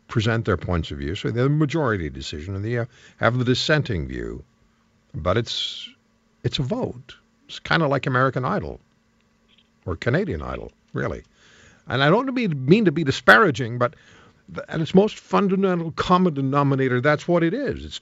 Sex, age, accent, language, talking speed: male, 60-79, American, English, 170 wpm